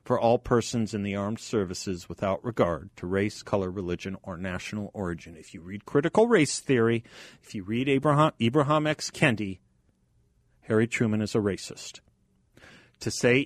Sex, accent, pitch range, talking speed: male, American, 100-125 Hz, 160 wpm